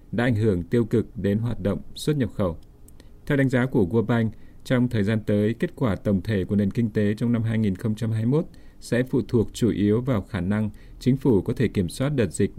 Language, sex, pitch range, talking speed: Vietnamese, male, 100-120 Hz, 230 wpm